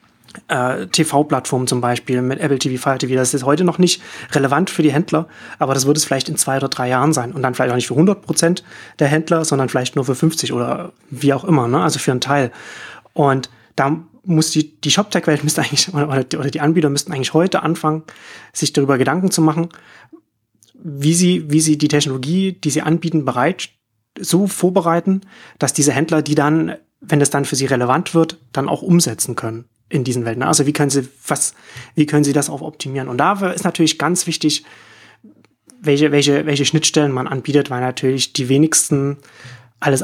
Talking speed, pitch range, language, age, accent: 200 wpm, 130-155 Hz, German, 30-49, German